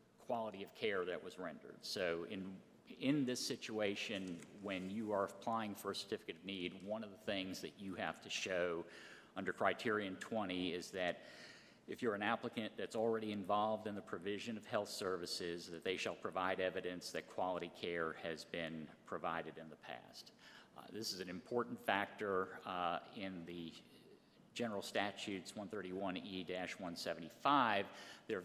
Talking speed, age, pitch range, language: 160 wpm, 50-69, 90-110 Hz, English